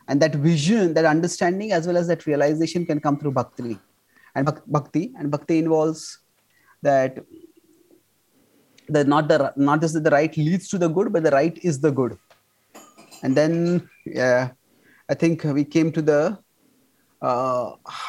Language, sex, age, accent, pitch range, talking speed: English, male, 30-49, Indian, 140-175 Hz, 160 wpm